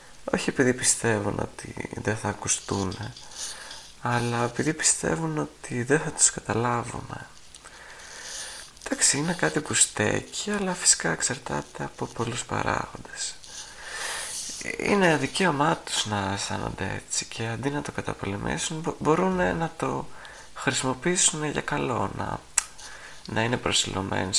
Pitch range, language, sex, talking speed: 100-140 Hz, Greek, male, 115 wpm